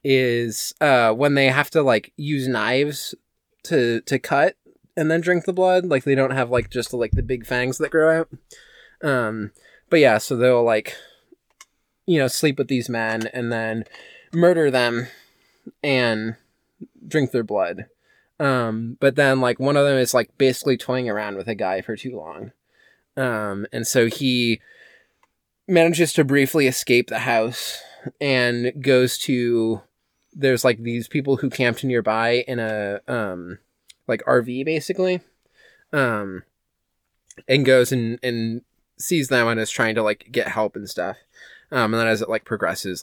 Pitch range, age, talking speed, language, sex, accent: 110-135 Hz, 20-39, 165 wpm, English, male, American